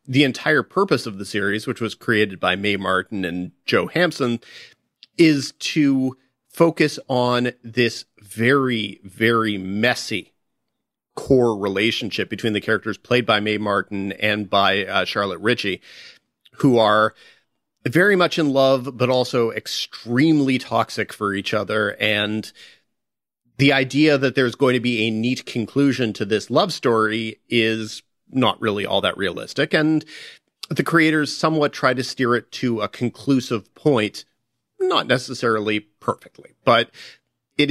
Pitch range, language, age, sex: 105-130 Hz, English, 40-59, male